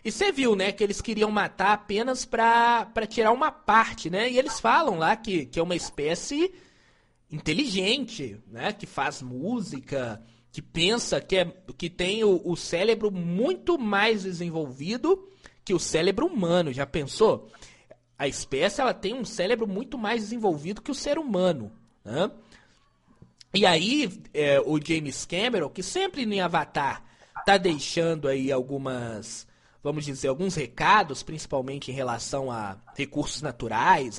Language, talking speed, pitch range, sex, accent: Portuguese, 145 wpm, 135-215 Hz, male, Brazilian